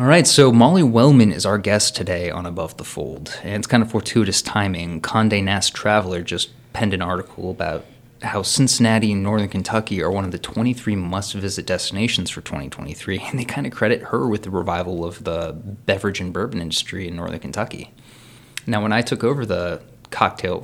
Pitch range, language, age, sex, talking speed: 95-120 Hz, English, 20-39, male, 190 wpm